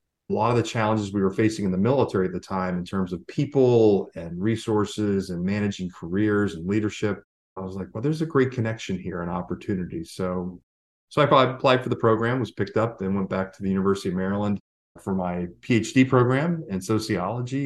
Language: English